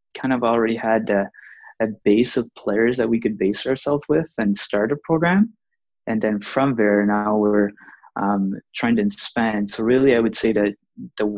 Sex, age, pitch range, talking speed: male, 20-39, 105-115 Hz, 190 wpm